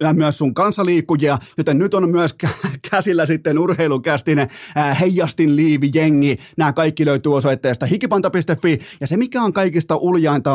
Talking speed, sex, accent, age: 135 wpm, male, native, 30-49